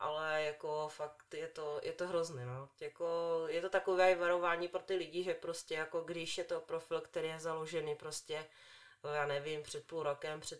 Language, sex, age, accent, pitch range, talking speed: Czech, female, 30-49, native, 160-185 Hz, 190 wpm